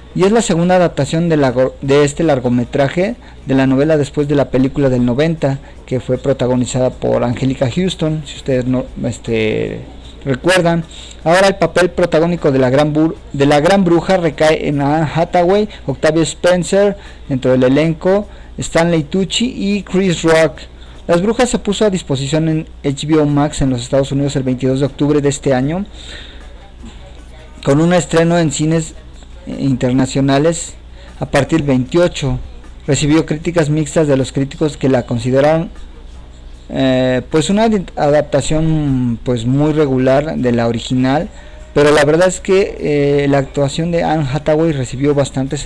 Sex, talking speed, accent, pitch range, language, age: male, 155 wpm, Mexican, 130-160 Hz, Spanish, 40-59